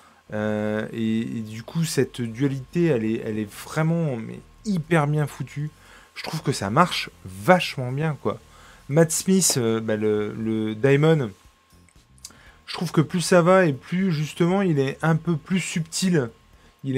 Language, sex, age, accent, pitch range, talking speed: French, male, 20-39, French, 110-160 Hz, 165 wpm